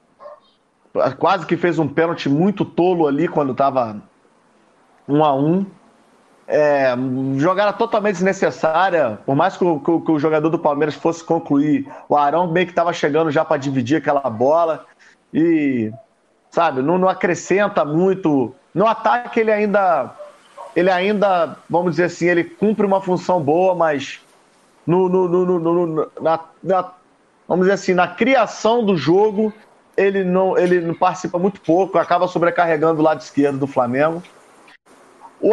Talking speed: 150 wpm